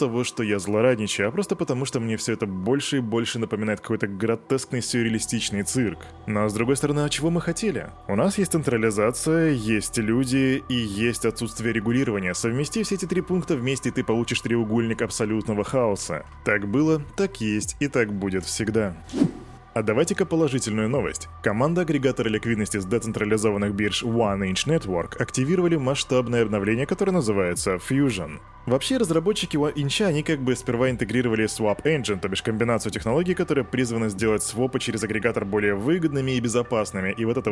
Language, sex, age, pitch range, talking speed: Russian, male, 20-39, 110-145 Hz, 165 wpm